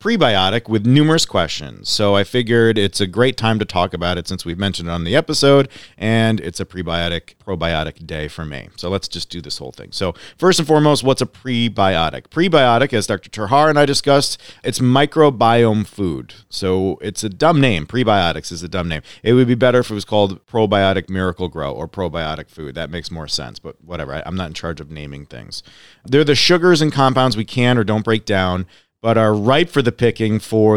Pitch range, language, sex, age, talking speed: 90-120 Hz, English, male, 40-59, 215 wpm